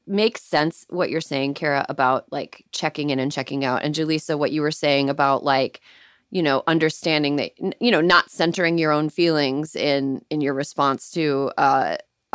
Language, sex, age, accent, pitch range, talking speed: English, female, 30-49, American, 140-175 Hz, 185 wpm